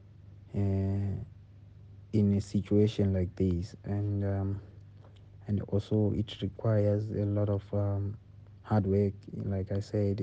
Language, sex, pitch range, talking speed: English, male, 100-105 Hz, 125 wpm